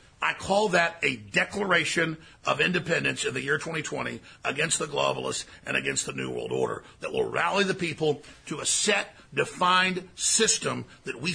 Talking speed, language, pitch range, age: 170 wpm, English, 175-215 Hz, 50-69